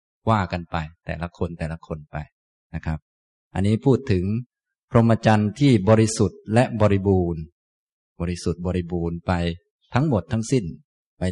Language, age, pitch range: Thai, 20-39, 90-115 Hz